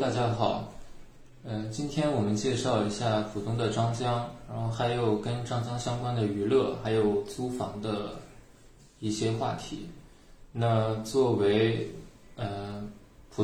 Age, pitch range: 20-39, 105-125 Hz